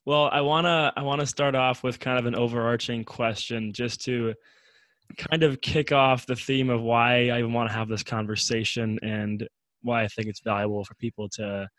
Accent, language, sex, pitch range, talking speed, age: American, English, male, 110-135 Hz, 200 wpm, 20-39